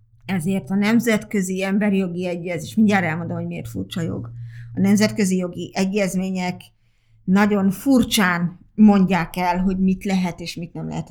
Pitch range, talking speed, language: 170-205 Hz, 145 wpm, Hungarian